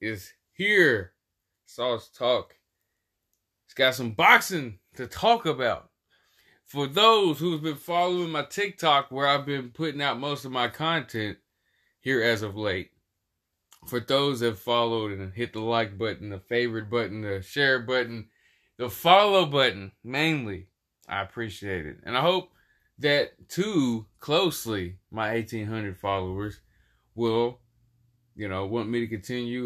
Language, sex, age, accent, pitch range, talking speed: English, male, 20-39, American, 100-135 Hz, 140 wpm